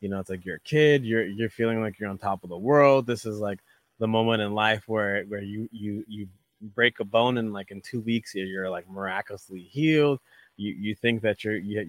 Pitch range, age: 100-120 Hz, 20-39